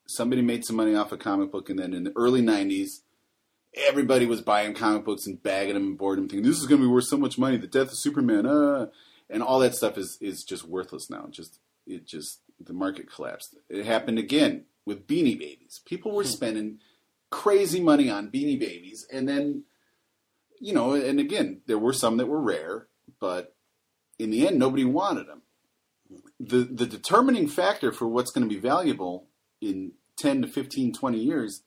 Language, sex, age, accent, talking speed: English, male, 30-49, American, 195 wpm